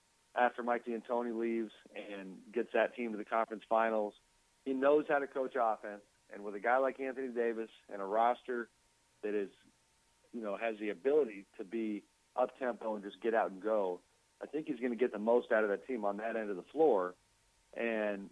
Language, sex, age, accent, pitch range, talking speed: English, male, 40-59, American, 105-125 Hz, 210 wpm